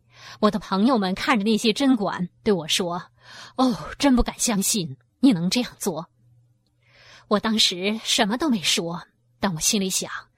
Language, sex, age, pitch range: Chinese, female, 20-39, 175-245 Hz